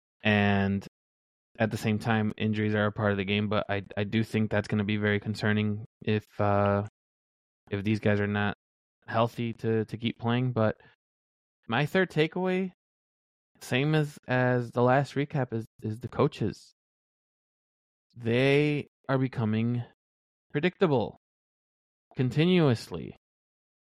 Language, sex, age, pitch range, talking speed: English, male, 20-39, 105-130 Hz, 135 wpm